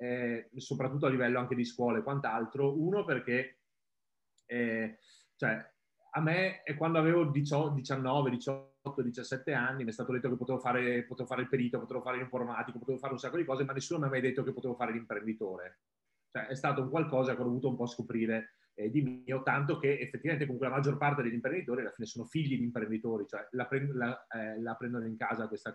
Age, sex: 30-49, male